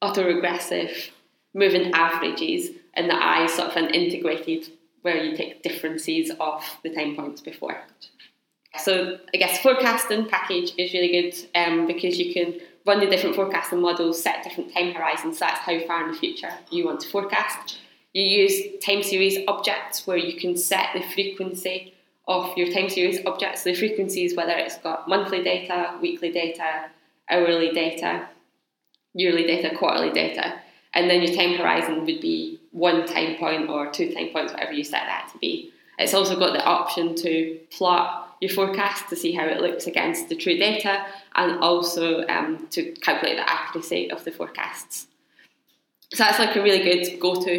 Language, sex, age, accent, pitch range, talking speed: English, female, 20-39, British, 170-200 Hz, 175 wpm